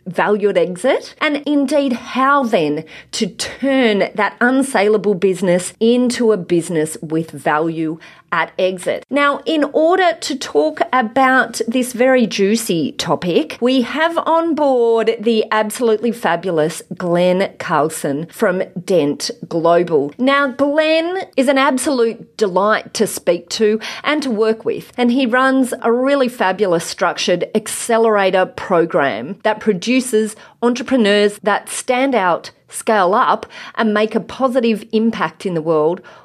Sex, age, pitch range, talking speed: female, 40-59, 185-265 Hz, 130 wpm